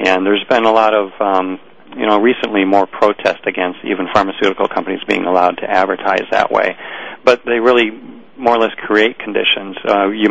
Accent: American